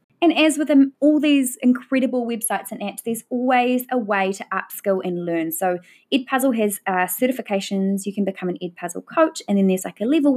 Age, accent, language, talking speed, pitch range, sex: 20-39, Australian, English, 195 wpm, 185-245 Hz, female